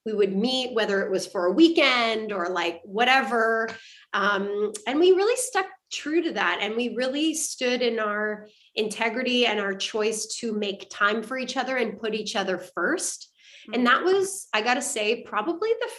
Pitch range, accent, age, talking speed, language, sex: 205-260 Hz, American, 20-39, 190 wpm, English, female